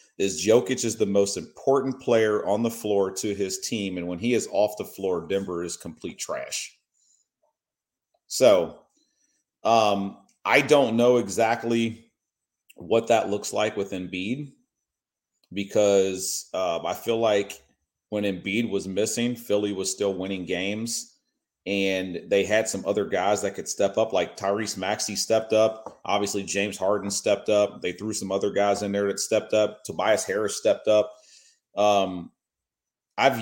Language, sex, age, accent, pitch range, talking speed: English, male, 30-49, American, 95-115 Hz, 155 wpm